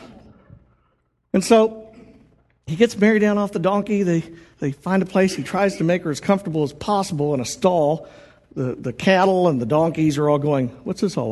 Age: 60-79